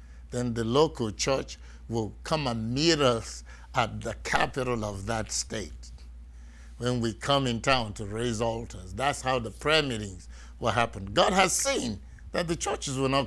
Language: English